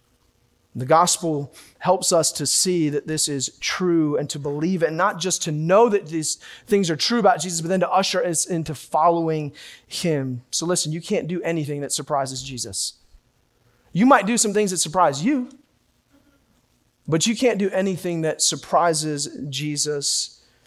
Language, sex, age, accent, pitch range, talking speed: English, male, 30-49, American, 140-170 Hz, 170 wpm